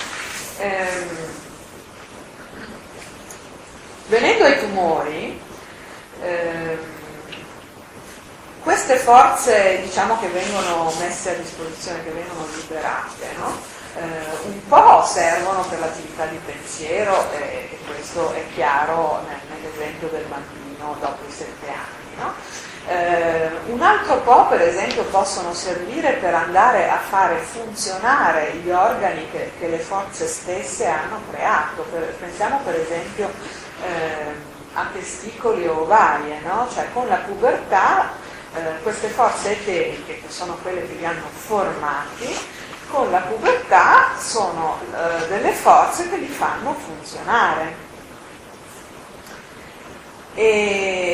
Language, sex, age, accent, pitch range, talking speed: Italian, female, 40-59, native, 160-220 Hz, 115 wpm